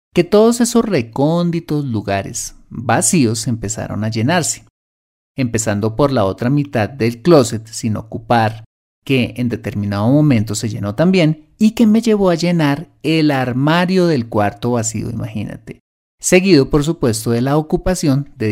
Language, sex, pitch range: Spanish, male, 110-160 Hz